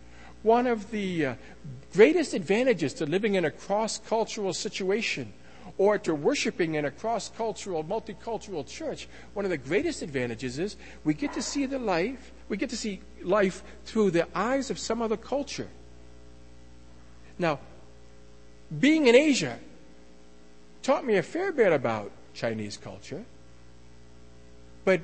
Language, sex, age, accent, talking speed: English, male, 50-69, American, 140 wpm